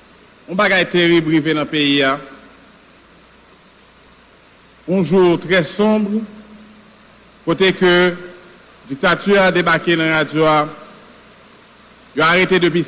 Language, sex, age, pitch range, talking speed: English, male, 60-79, 170-210 Hz, 100 wpm